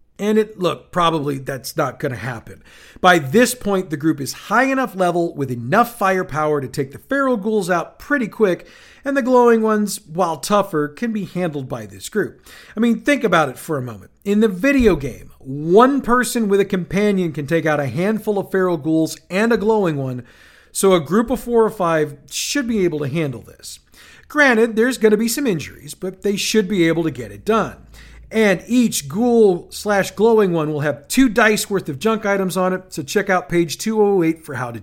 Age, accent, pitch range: 40-59, American, 150-220 Hz